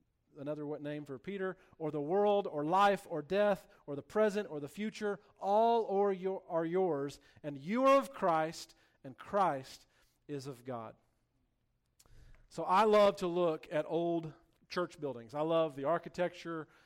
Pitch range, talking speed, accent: 150-190 Hz, 155 wpm, American